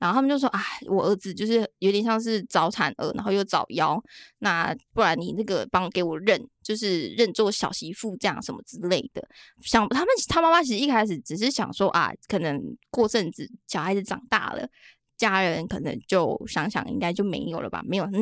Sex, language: female, Chinese